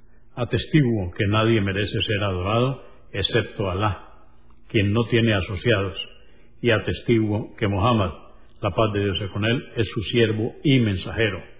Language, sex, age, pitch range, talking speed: Spanish, male, 60-79, 110-145 Hz, 145 wpm